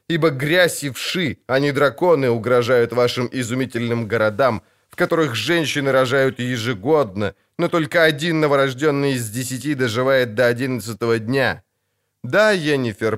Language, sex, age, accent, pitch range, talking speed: Ukrainian, male, 20-39, native, 120-155 Hz, 125 wpm